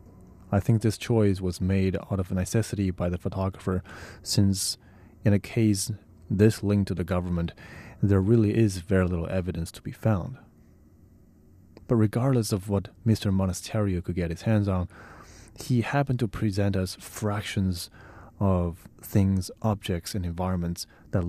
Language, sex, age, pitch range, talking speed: English, male, 30-49, 90-105 Hz, 150 wpm